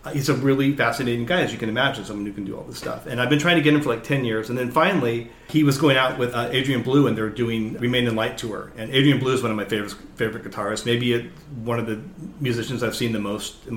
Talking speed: 285 wpm